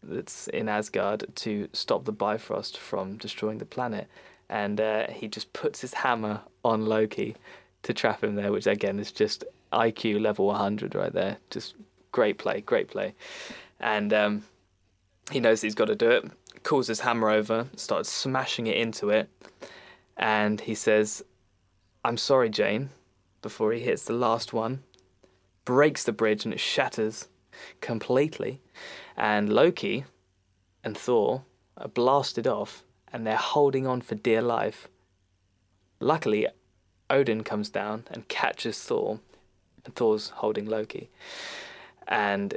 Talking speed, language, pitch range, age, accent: 140 wpm, English, 105-115 Hz, 20-39, British